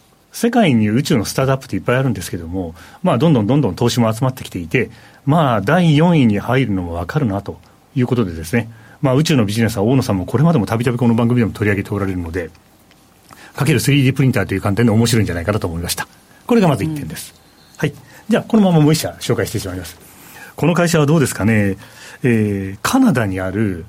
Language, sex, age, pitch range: Japanese, male, 40-59, 100-155 Hz